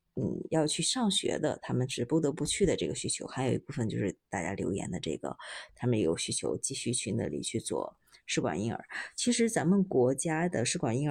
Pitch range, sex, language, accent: 135-190 Hz, female, Chinese, native